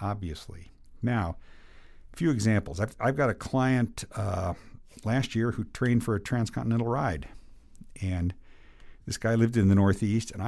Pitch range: 85-110 Hz